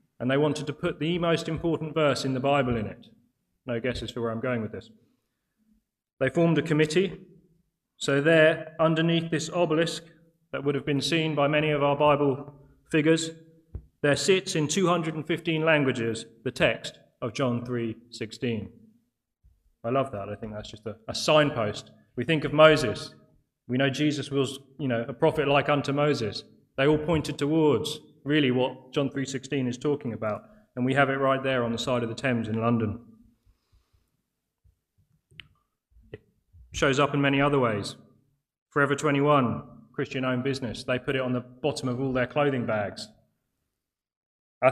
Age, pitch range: 30-49, 120-155 Hz